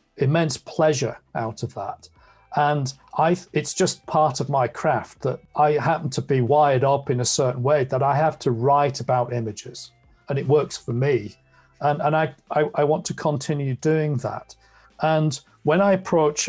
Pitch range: 125-155 Hz